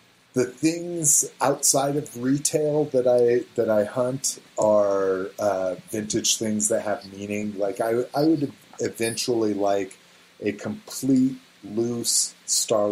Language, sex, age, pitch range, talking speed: English, male, 40-59, 100-115 Hz, 125 wpm